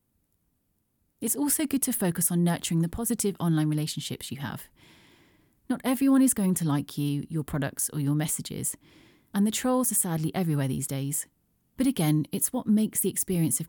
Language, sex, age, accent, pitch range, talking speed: English, female, 30-49, British, 150-200 Hz, 180 wpm